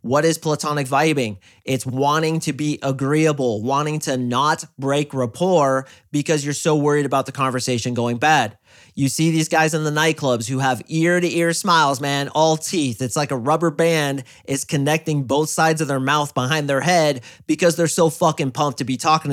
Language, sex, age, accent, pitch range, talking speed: English, male, 30-49, American, 135-170 Hz, 185 wpm